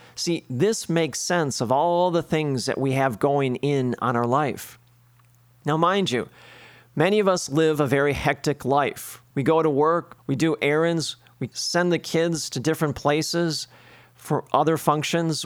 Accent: American